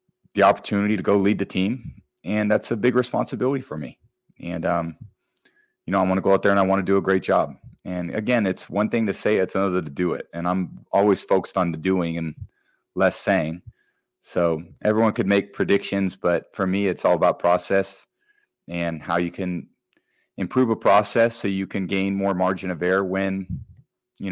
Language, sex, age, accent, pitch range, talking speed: English, male, 30-49, American, 90-100 Hz, 205 wpm